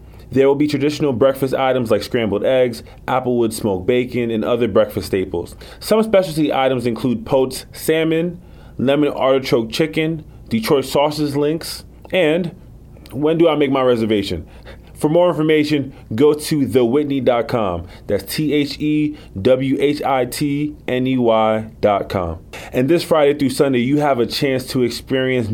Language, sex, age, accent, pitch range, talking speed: English, male, 30-49, American, 115-145 Hz, 125 wpm